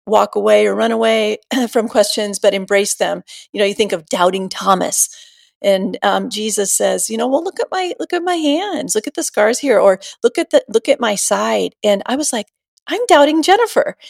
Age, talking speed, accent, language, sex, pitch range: 40-59, 215 wpm, American, English, female, 195-250 Hz